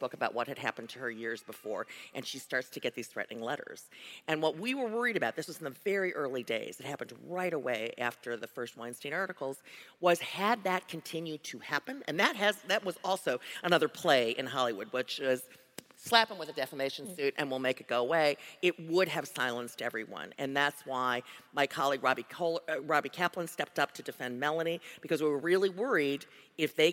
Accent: American